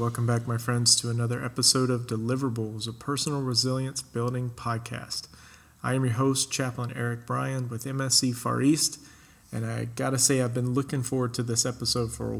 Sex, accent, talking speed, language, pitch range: male, American, 190 wpm, English, 115-130 Hz